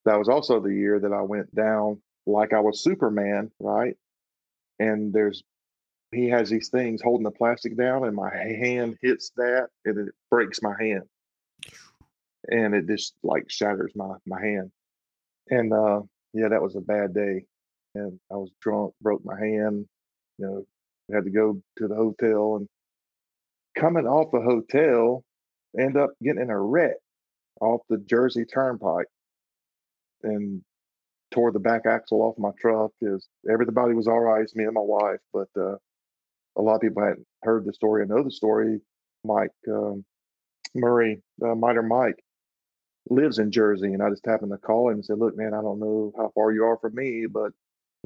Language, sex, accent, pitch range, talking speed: English, male, American, 100-115 Hz, 180 wpm